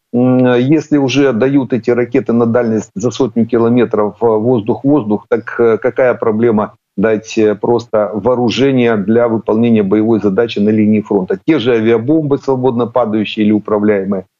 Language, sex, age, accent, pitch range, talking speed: Ukrainian, male, 50-69, native, 110-135 Hz, 130 wpm